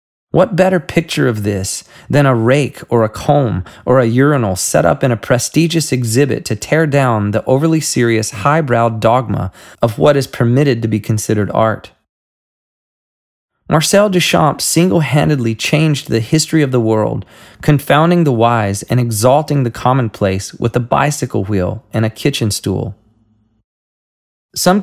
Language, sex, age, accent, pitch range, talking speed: English, male, 20-39, American, 110-145 Hz, 145 wpm